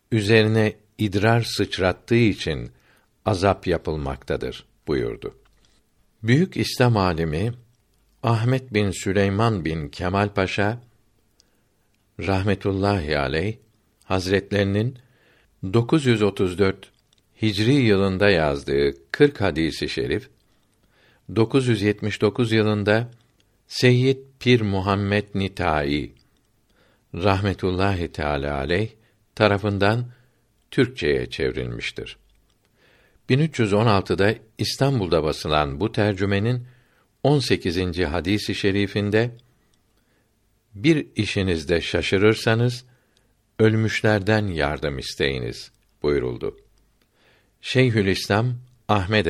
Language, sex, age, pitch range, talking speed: Turkish, male, 50-69, 95-120 Hz, 65 wpm